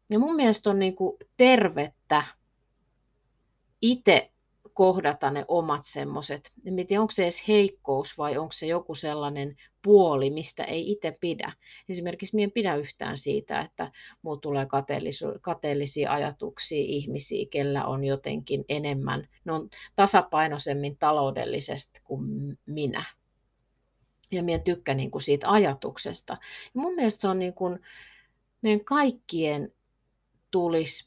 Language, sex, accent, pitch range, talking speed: Finnish, female, native, 145-200 Hz, 115 wpm